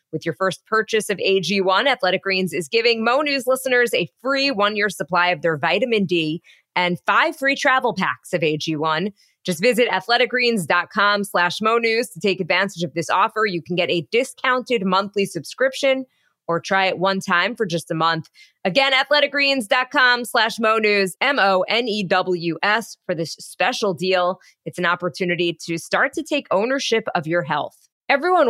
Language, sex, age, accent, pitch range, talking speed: English, female, 20-39, American, 175-235 Hz, 160 wpm